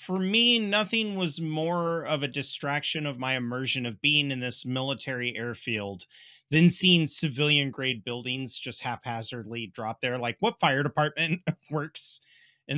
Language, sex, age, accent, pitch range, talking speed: English, male, 30-49, American, 130-160 Hz, 145 wpm